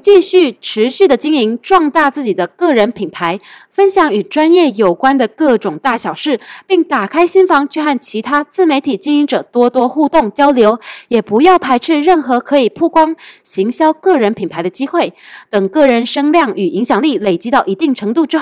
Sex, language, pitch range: female, Chinese, 215-315 Hz